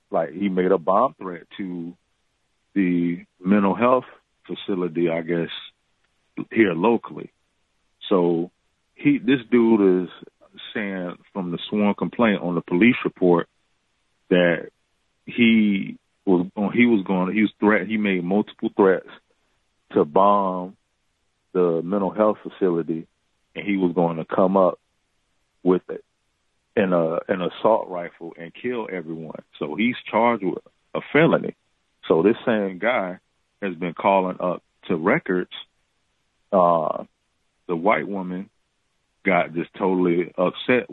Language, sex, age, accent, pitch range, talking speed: English, male, 40-59, American, 85-105 Hz, 130 wpm